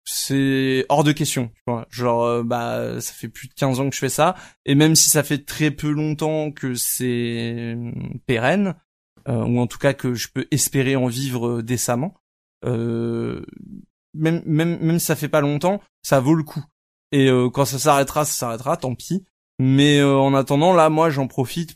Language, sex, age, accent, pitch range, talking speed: French, male, 20-39, French, 125-150 Hz, 195 wpm